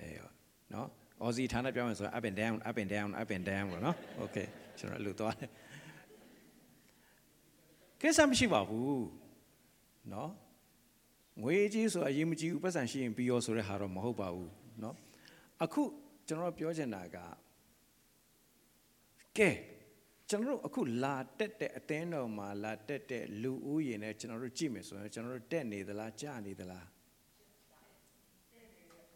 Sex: male